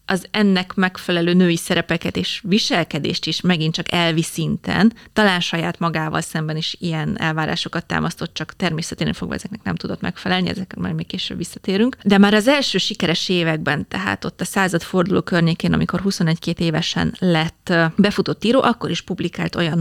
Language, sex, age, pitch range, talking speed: Hungarian, female, 30-49, 170-205 Hz, 160 wpm